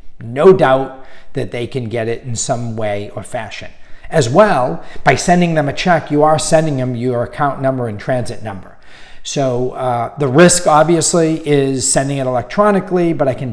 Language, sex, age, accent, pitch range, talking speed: English, male, 40-59, American, 125-155 Hz, 180 wpm